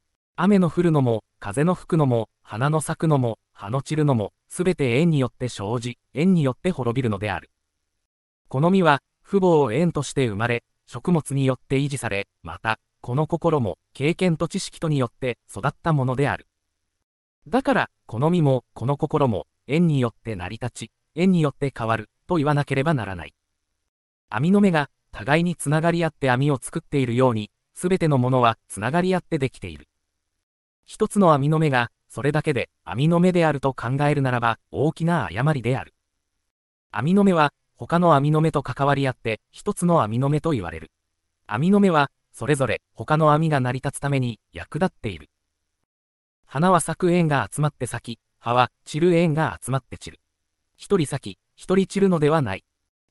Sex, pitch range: male, 105-155 Hz